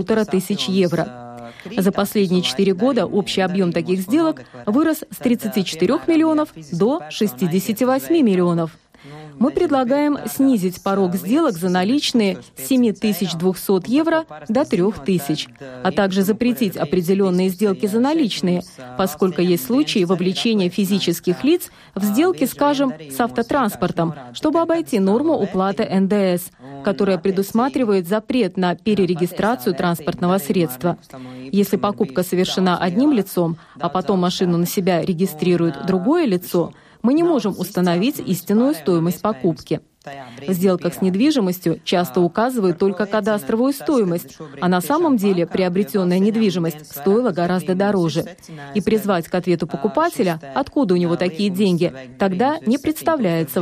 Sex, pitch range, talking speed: female, 180-235 Hz, 120 wpm